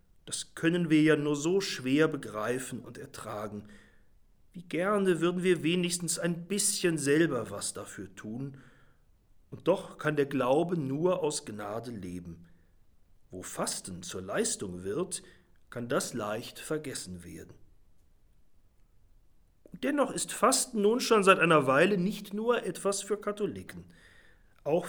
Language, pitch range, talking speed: German, 130-190 Hz, 130 wpm